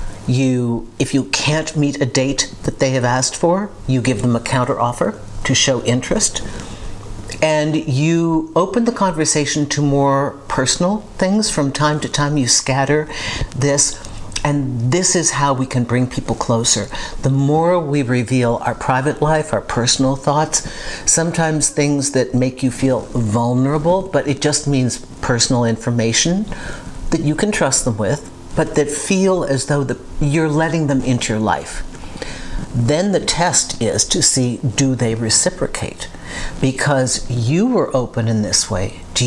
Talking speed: 155 wpm